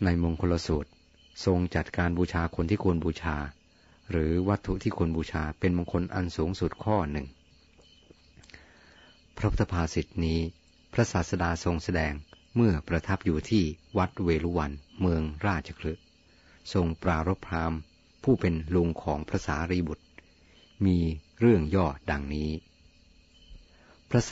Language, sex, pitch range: Thai, male, 80-95 Hz